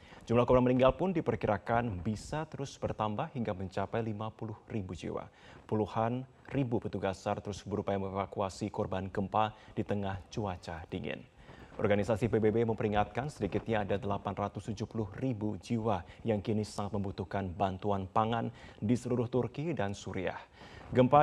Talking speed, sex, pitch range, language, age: 125 wpm, male, 100-115 Hz, Indonesian, 30-49